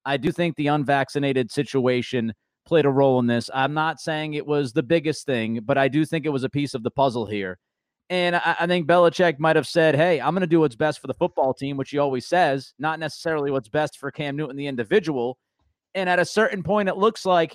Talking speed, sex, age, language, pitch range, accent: 245 wpm, male, 30-49, English, 135-175 Hz, American